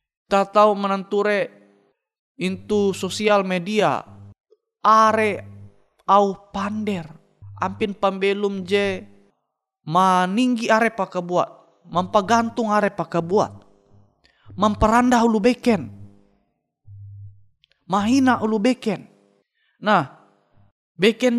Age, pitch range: 30-49, 155-220 Hz